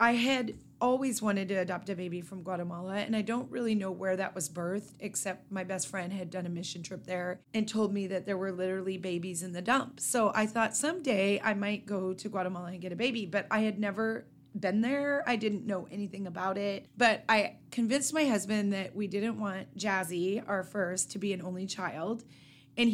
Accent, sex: American, female